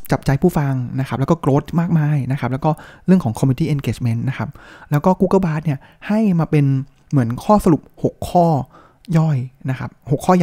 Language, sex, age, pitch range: Thai, male, 20-39, 130-165 Hz